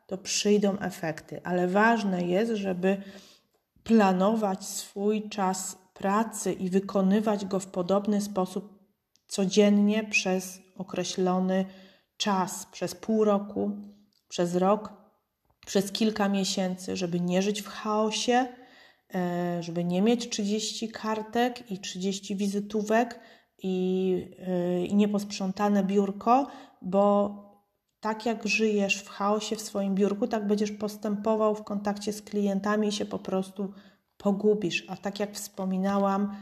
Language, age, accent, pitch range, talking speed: Polish, 30-49, native, 185-210 Hz, 115 wpm